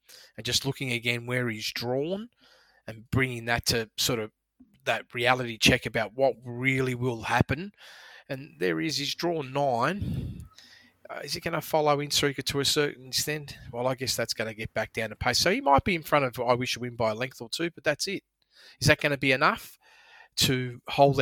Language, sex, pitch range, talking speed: English, male, 120-150 Hz, 220 wpm